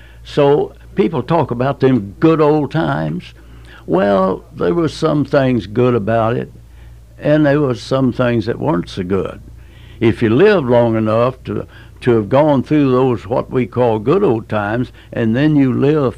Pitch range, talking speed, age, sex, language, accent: 110-135 Hz, 170 wpm, 60-79, male, English, American